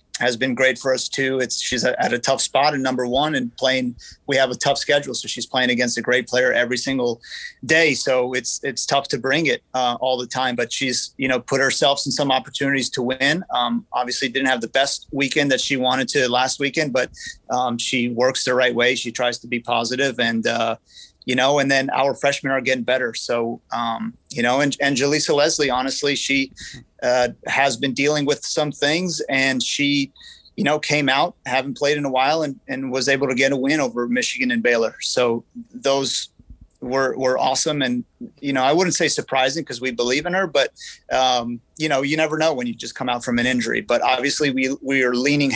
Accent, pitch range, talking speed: American, 125-140 Hz, 220 wpm